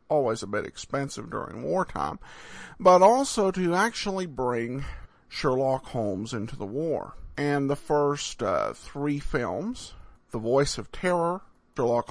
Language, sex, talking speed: English, male, 135 wpm